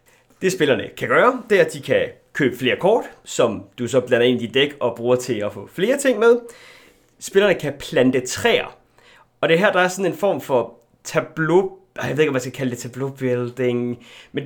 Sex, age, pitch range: male, 30-49, 130-205 Hz